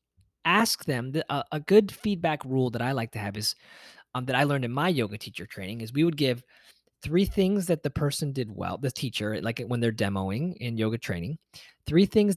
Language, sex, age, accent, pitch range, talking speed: English, male, 20-39, American, 120-170 Hz, 210 wpm